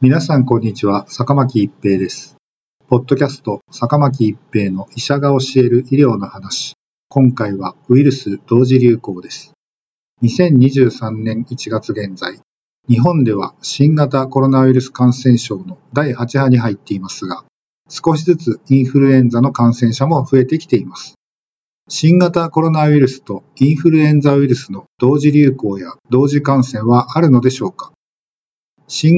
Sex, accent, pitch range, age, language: male, native, 120-145 Hz, 50-69, Japanese